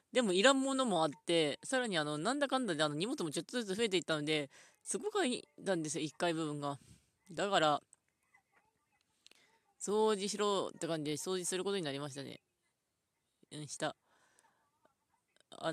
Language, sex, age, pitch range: Japanese, female, 20-39, 155-200 Hz